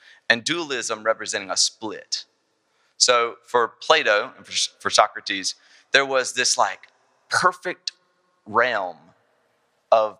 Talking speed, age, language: 105 wpm, 30-49, English